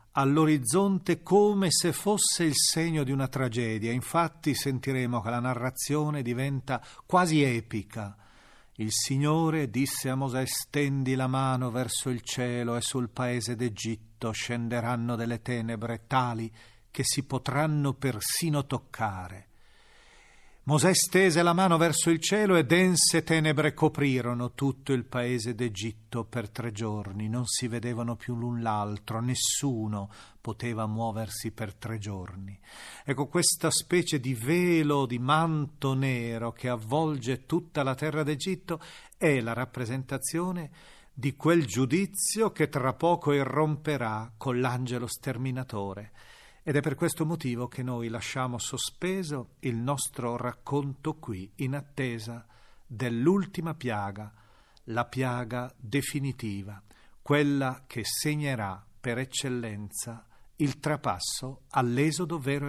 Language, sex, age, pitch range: Italian, male, 40-59, 115-150 Hz